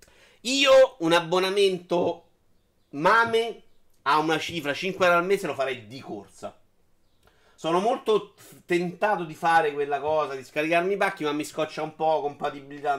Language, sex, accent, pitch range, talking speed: Italian, male, native, 135-200 Hz, 150 wpm